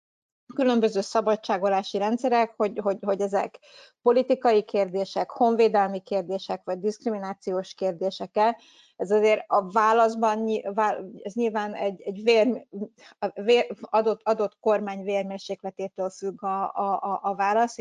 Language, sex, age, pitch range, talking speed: Hungarian, female, 30-49, 190-225 Hz, 120 wpm